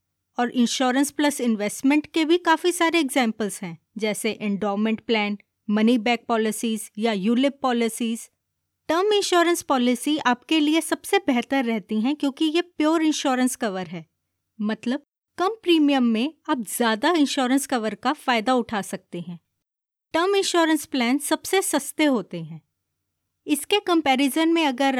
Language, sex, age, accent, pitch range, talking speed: Hindi, female, 20-39, native, 220-310 Hz, 140 wpm